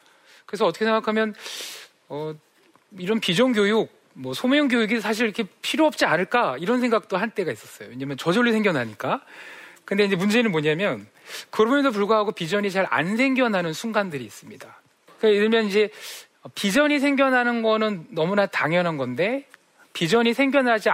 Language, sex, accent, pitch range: Korean, male, native, 180-265 Hz